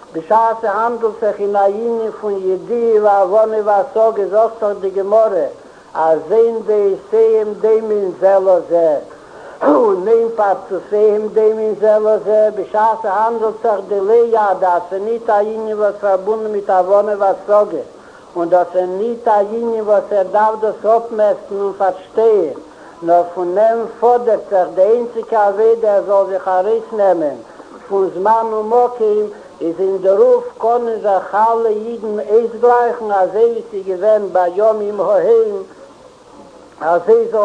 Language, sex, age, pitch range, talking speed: Hebrew, male, 60-79, 195-225 Hz, 110 wpm